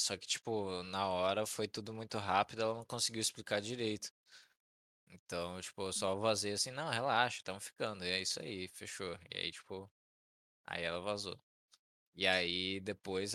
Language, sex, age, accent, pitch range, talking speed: Portuguese, male, 20-39, Brazilian, 95-110 Hz, 170 wpm